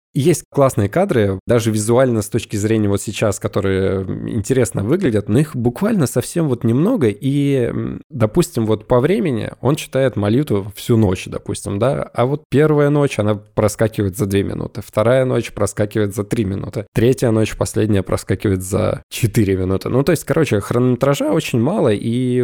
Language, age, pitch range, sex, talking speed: Russian, 20-39, 105-125 Hz, male, 165 wpm